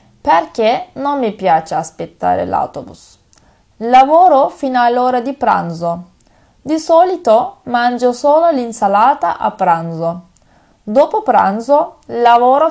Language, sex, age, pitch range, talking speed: Turkish, female, 20-39, 195-280 Hz, 100 wpm